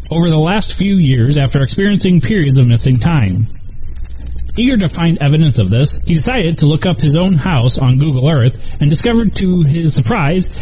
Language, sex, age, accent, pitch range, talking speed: English, male, 30-49, American, 125-180 Hz, 185 wpm